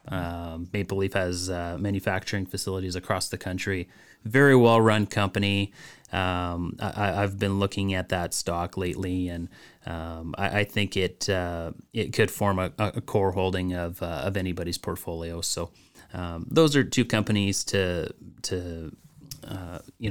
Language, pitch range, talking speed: English, 90-110 Hz, 155 wpm